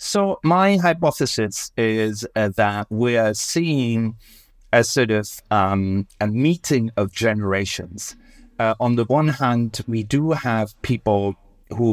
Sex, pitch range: male, 105-125 Hz